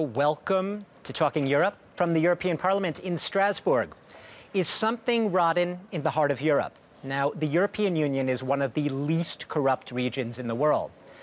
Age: 50-69